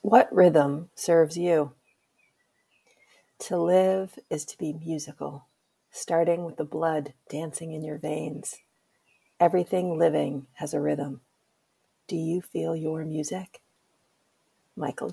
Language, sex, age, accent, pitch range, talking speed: English, female, 40-59, American, 145-175 Hz, 115 wpm